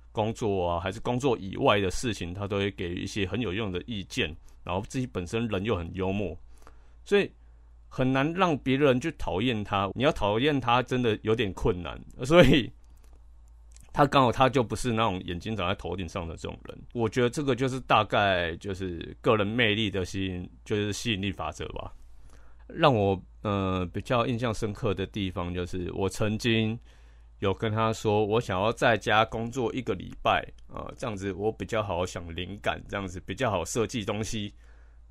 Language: Chinese